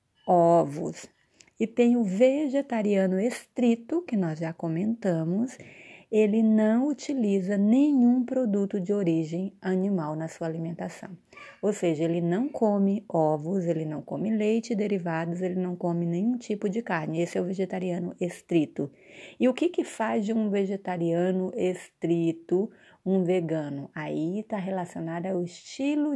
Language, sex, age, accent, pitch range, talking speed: Portuguese, female, 30-49, Brazilian, 170-220 Hz, 140 wpm